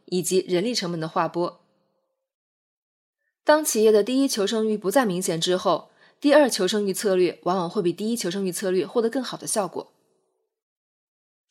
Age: 20-39